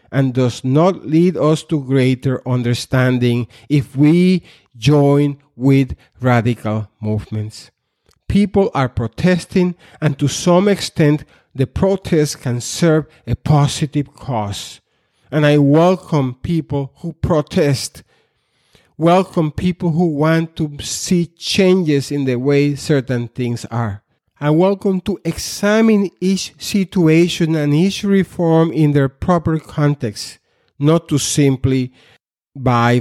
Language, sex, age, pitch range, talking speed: English, male, 50-69, 120-160 Hz, 115 wpm